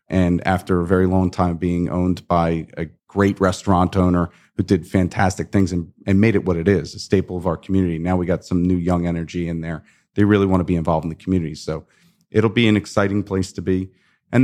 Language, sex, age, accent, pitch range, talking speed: English, male, 40-59, American, 85-100 Hz, 235 wpm